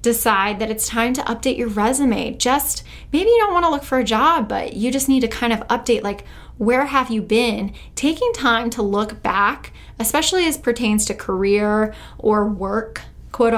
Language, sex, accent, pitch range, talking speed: English, female, American, 215-270 Hz, 195 wpm